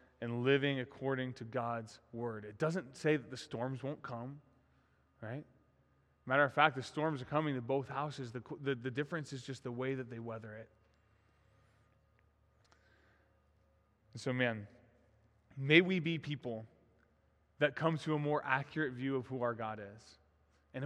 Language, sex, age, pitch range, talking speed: English, male, 20-39, 110-150 Hz, 160 wpm